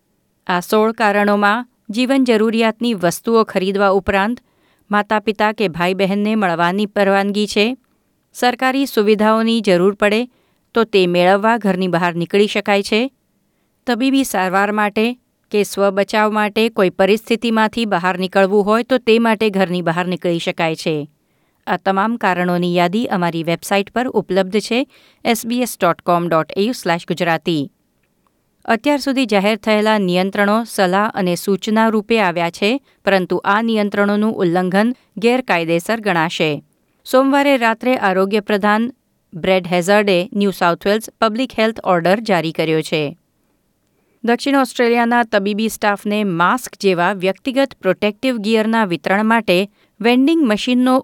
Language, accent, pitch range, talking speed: Gujarati, native, 185-225 Hz, 120 wpm